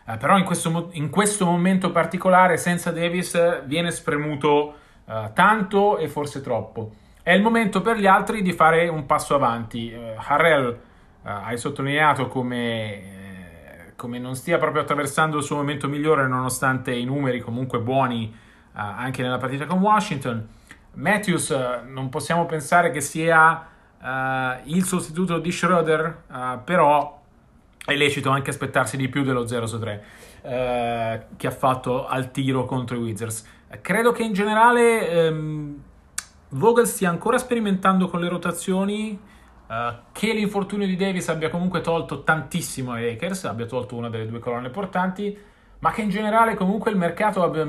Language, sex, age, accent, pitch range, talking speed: Italian, male, 30-49, native, 125-180 Hz, 145 wpm